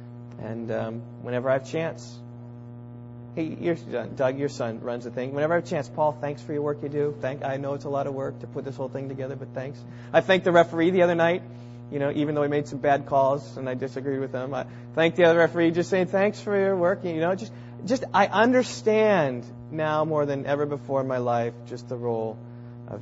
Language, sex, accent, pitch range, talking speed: English, male, American, 120-135 Hz, 235 wpm